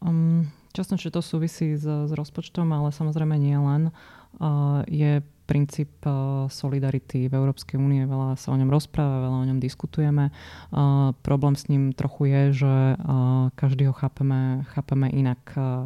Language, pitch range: Slovak, 130-145 Hz